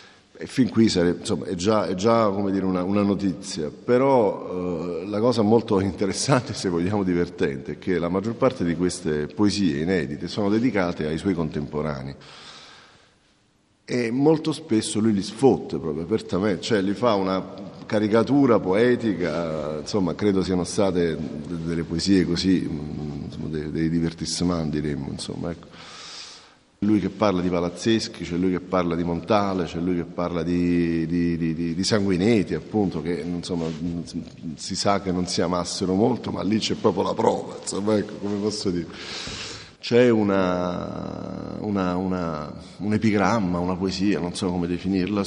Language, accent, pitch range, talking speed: Italian, native, 85-100 Hz, 150 wpm